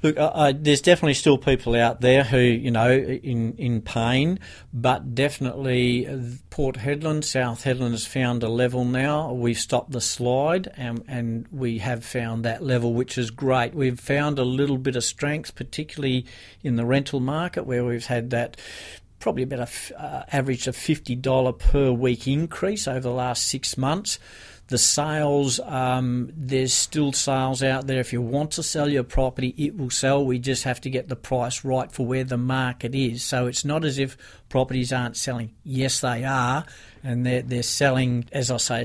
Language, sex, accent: English, male, Australian